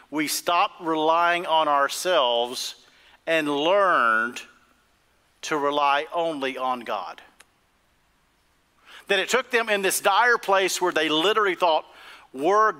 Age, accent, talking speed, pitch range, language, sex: 50-69, American, 115 wpm, 140-225 Hz, English, male